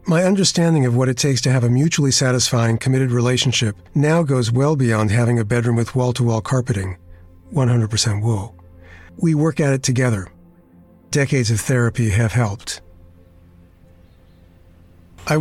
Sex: male